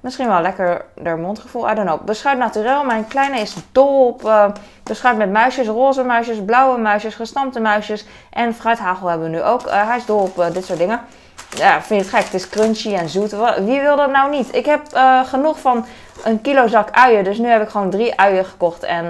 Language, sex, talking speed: Dutch, female, 225 wpm